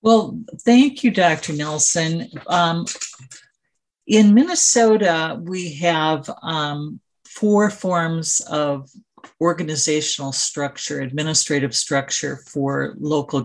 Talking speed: 90 wpm